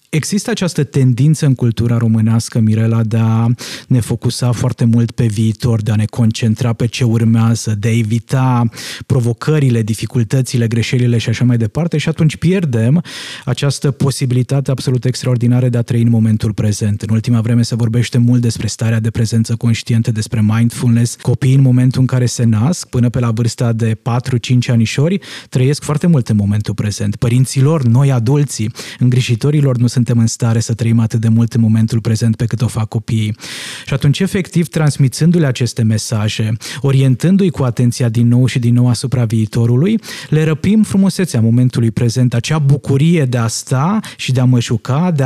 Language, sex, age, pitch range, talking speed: Romanian, male, 20-39, 115-145 Hz, 175 wpm